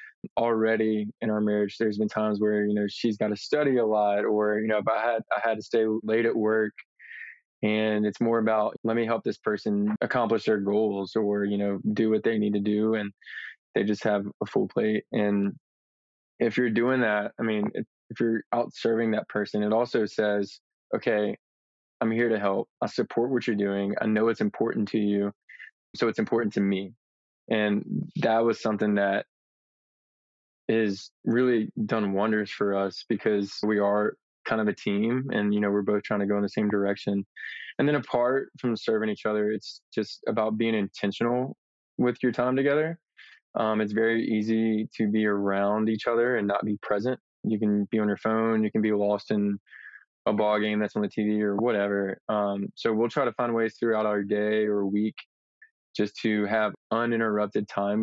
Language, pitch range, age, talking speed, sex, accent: English, 105-115 Hz, 20-39, 195 wpm, male, American